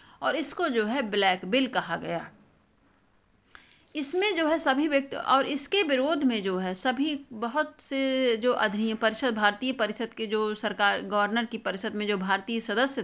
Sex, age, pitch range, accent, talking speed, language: female, 50-69, 195-265 Hz, native, 170 wpm, Hindi